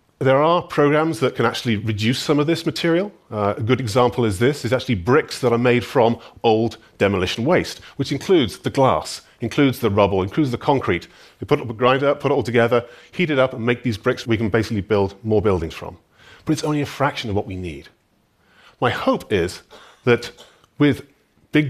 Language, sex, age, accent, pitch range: Korean, male, 40-59, British, 110-145 Hz